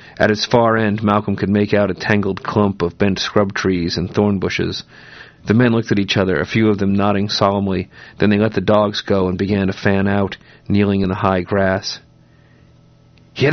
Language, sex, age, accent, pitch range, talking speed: English, male, 40-59, American, 100-110 Hz, 210 wpm